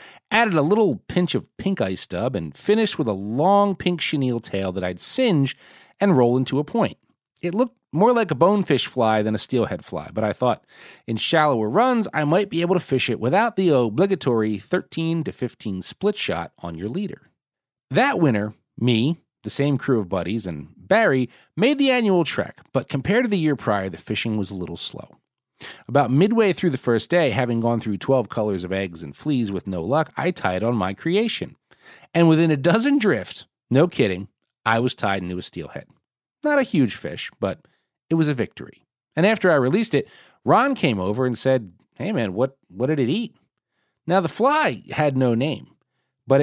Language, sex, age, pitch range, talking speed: English, male, 40-59, 110-180 Hz, 200 wpm